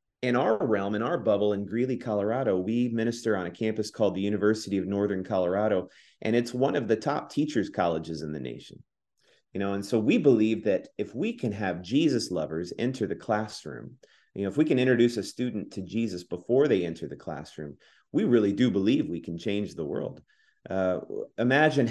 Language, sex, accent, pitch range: English, male, American, 100-125 Hz